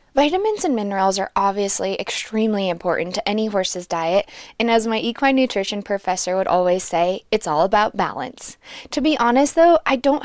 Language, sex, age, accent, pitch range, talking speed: English, female, 20-39, American, 190-255 Hz, 175 wpm